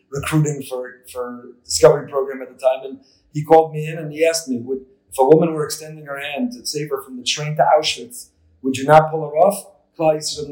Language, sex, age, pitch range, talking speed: English, male, 30-49, 125-165 Hz, 235 wpm